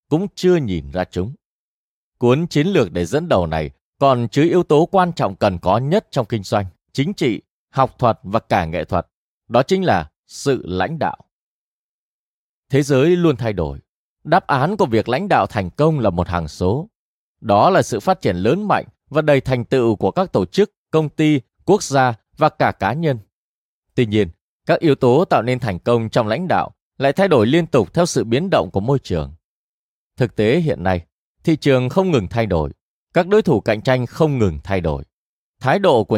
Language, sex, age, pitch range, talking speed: Vietnamese, male, 20-39, 95-155 Hz, 205 wpm